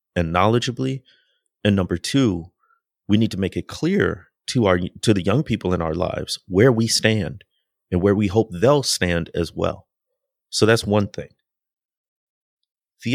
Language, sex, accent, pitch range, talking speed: English, male, American, 90-120 Hz, 165 wpm